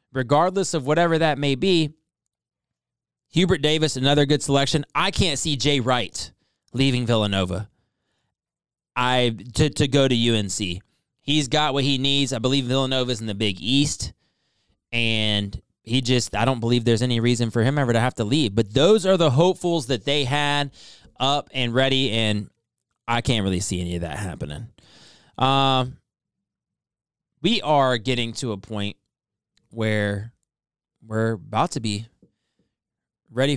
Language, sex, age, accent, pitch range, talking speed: English, male, 20-39, American, 110-145 Hz, 150 wpm